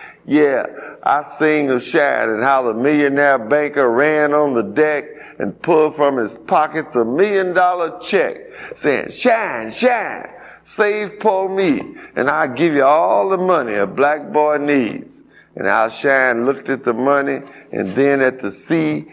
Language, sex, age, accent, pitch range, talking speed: English, male, 50-69, American, 135-175 Hz, 160 wpm